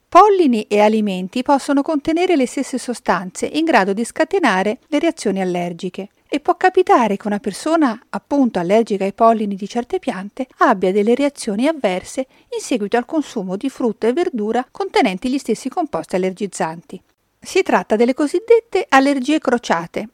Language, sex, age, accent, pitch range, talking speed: Italian, female, 50-69, native, 200-285 Hz, 150 wpm